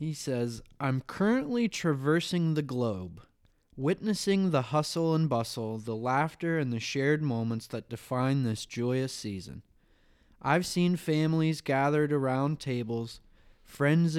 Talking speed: 125 wpm